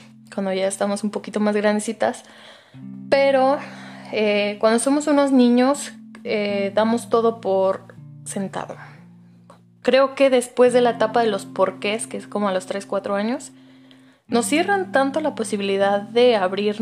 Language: Spanish